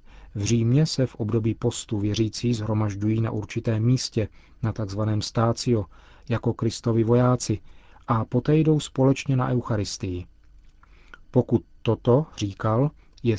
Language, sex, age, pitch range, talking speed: Czech, male, 40-59, 105-125 Hz, 120 wpm